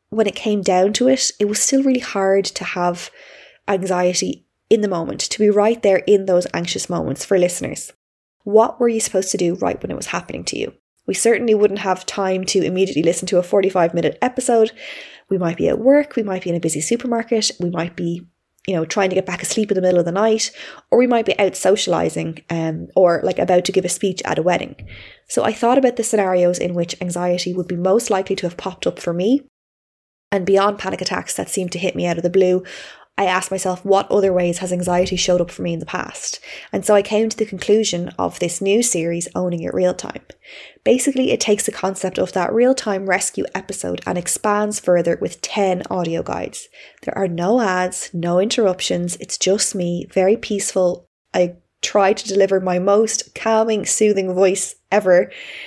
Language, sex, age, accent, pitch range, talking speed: English, female, 20-39, Irish, 180-210 Hz, 210 wpm